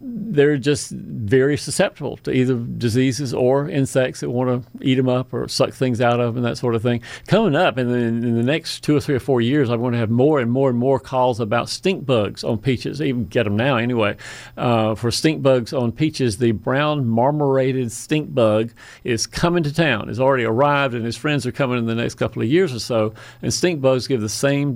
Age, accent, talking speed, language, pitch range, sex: 50-69, American, 230 wpm, English, 120-140 Hz, male